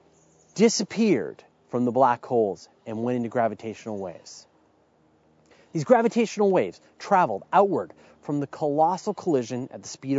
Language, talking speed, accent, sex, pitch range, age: English, 130 wpm, American, male, 125-200 Hz, 30-49